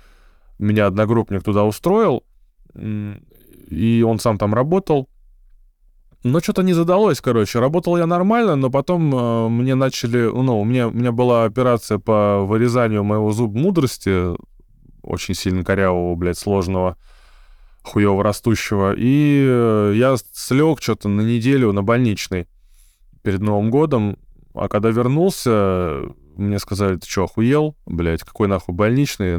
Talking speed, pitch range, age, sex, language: 125 wpm, 95-125 Hz, 20-39, male, Russian